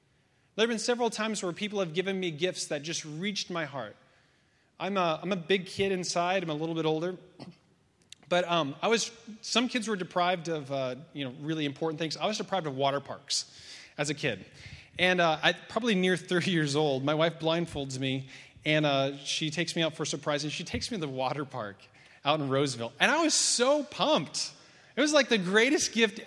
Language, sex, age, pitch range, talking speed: English, male, 30-49, 155-210 Hz, 215 wpm